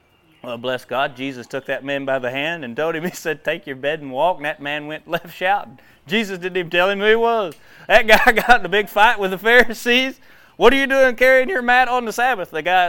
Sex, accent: male, American